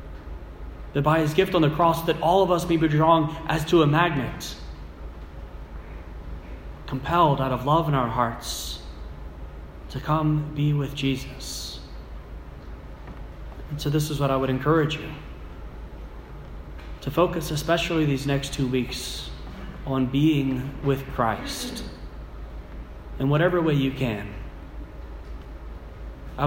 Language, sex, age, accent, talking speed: English, male, 30-49, American, 125 wpm